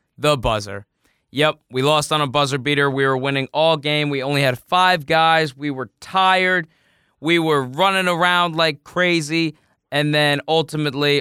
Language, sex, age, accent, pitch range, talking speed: English, male, 20-39, American, 120-155 Hz, 165 wpm